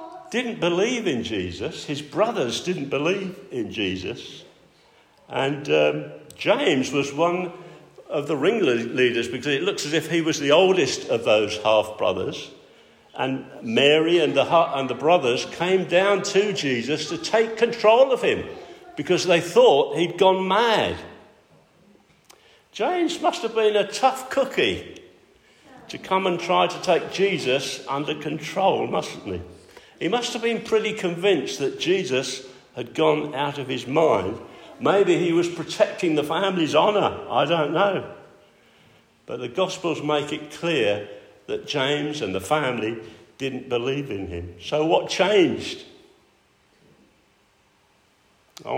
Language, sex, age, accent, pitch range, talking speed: English, male, 60-79, British, 140-205 Hz, 140 wpm